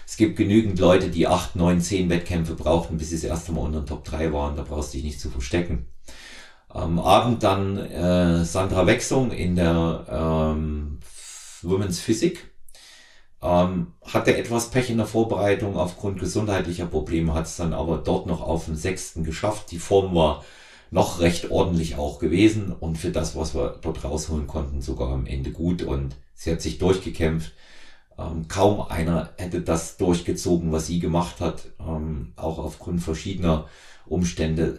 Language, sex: German, male